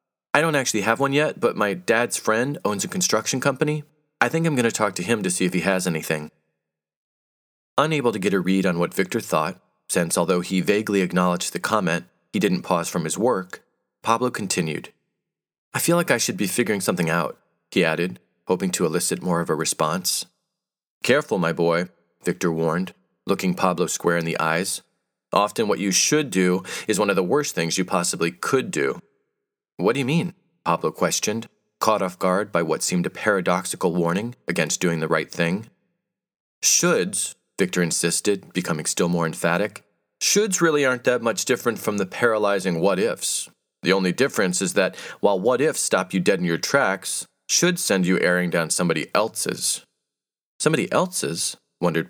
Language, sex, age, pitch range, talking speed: English, male, 40-59, 85-130 Hz, 180 wpm